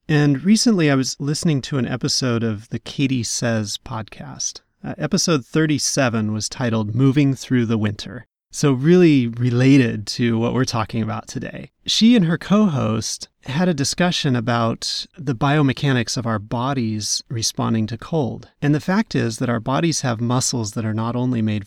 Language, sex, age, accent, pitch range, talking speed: English, male, 30-49, American, 115-155 Hz, 170 wpm